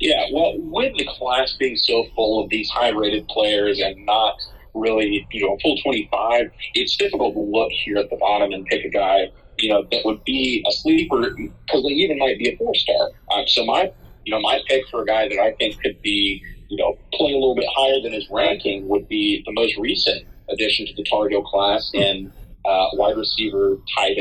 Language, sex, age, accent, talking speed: English, male, 30-49, American, 220 wpm